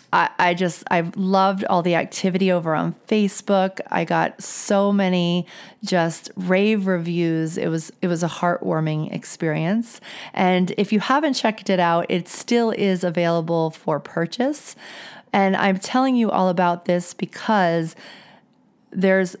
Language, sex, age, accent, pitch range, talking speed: English, female, 30-49, American, 170-200 Hz, 140 wpm